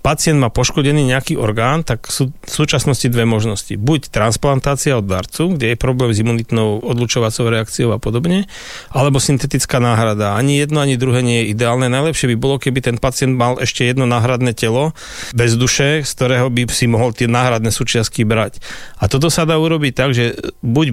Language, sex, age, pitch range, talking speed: Slovak, male, 40-59, 115-140 Hz, 185 wpm